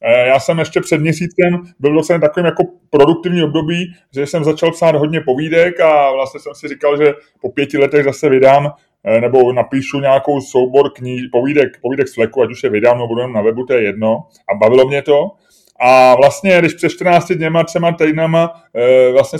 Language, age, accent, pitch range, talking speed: Czech, 20-39, native, 150-175 Hz, 190 wpm